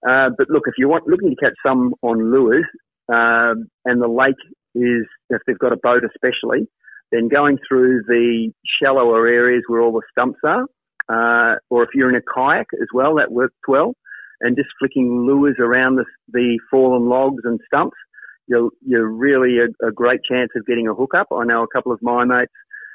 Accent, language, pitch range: Australian, English, 115-130 Hz